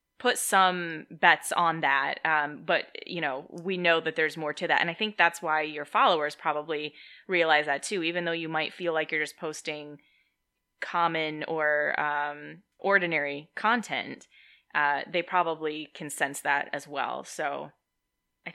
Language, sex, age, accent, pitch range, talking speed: English, female, 10-29, American, 150-175 Hz, 165 wpm